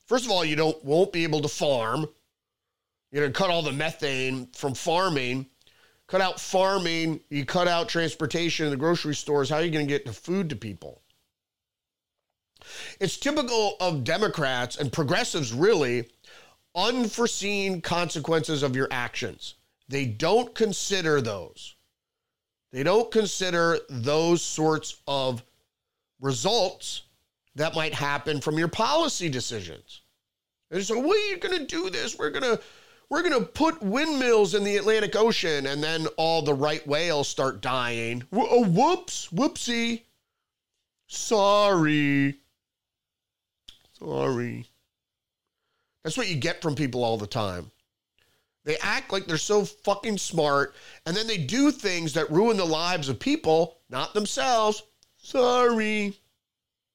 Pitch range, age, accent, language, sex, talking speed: 140-205 Hz, 30-49, American, English, male, 135 wpm